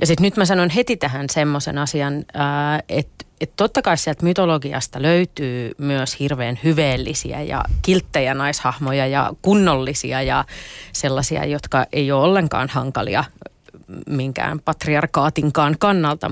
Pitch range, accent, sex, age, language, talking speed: 140-170 Hz, native, female, 30-49, Finnish, 125 wpm